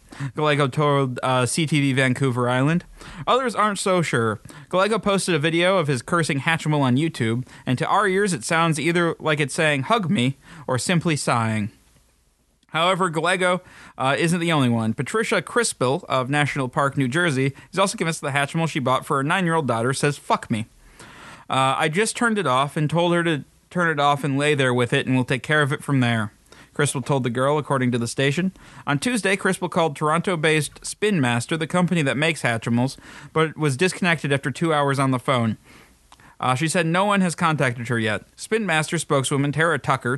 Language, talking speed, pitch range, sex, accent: English, 200 wpm, 130-170 Hz, male, American